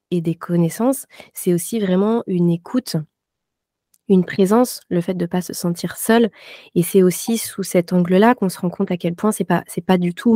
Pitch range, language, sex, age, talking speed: 170-215 Hz, French, female, 20-39, 215 wpm